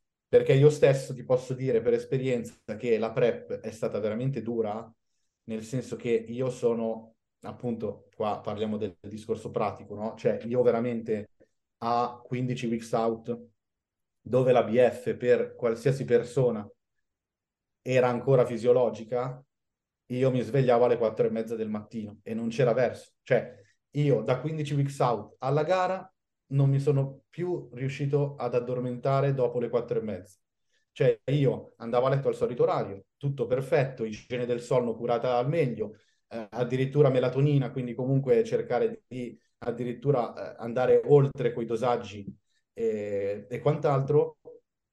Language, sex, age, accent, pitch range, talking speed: Italian, male, 30-49, native, 115-145 Hz, 145 wpm